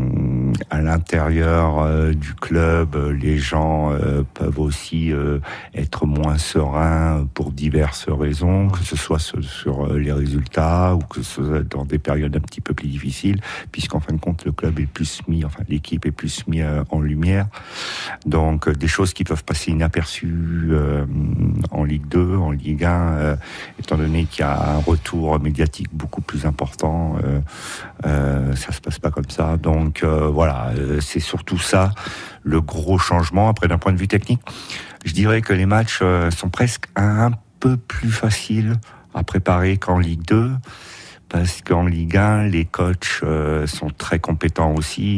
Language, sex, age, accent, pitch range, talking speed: French, male, 50-69, French, 75-90 Hz, 170 wpm